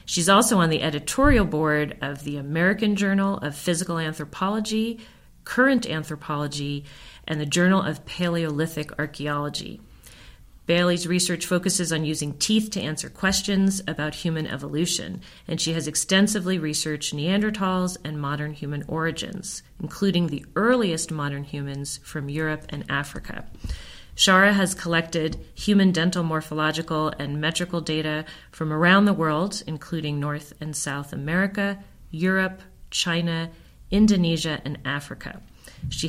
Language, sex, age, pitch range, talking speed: English, female, 40-59, 150-190 Hz, 125 wpm